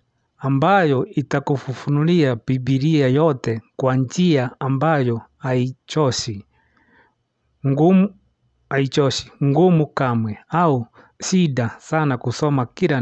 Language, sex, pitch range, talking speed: English, male, 125-155 Hz, 80 wpm